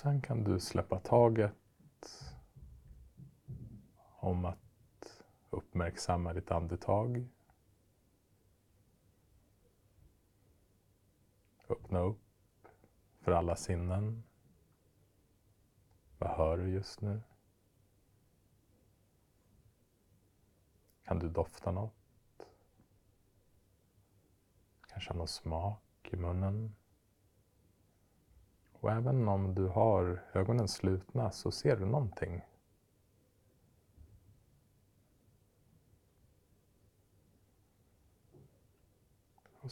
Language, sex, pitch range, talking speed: Swedish, male, 95-105 Hz, 60 wpm